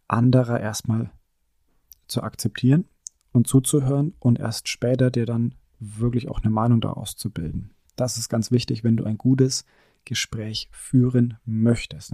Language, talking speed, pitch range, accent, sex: German, 145 wpm, 115-135 Hz, German, male